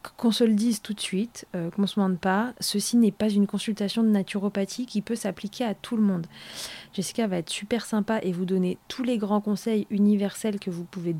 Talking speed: 220 wpm